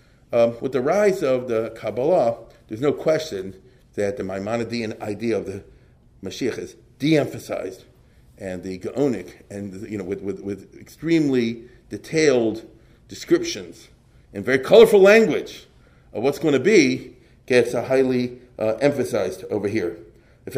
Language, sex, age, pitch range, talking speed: English, male, 40-59, 115-165 Hz, 130 wpm